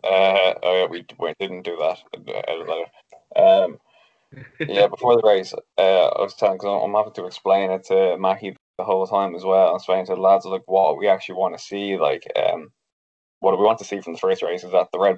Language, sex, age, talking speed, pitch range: English, male, 10-29, 225 wpm, 95-110 Hz